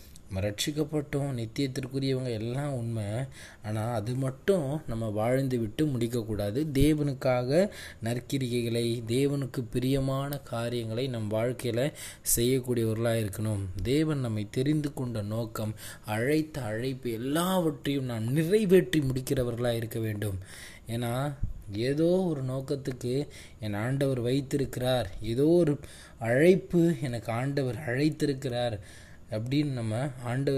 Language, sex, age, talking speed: Tamil, male, 20-39, 95 wpm